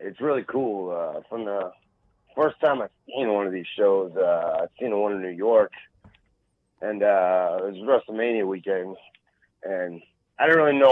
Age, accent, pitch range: 30-49, American, 100-135 Hz